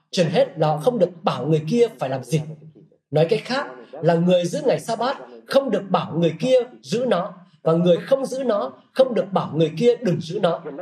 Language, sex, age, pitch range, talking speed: Vietnamese, male, 20-39, 160-220 Hz, 220 wpm